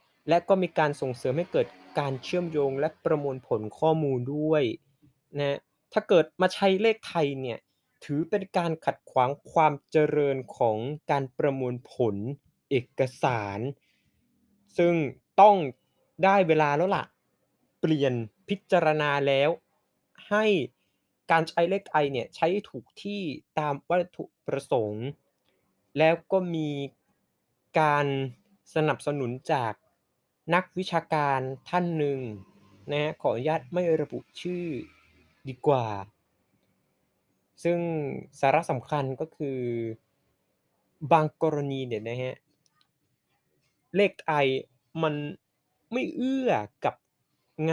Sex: male